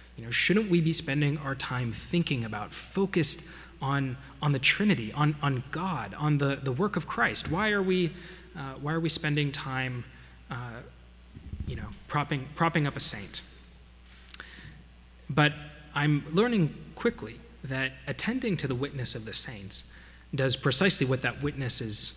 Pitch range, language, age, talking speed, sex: 115-150 Hz, English, 20-39, 160 wpm, male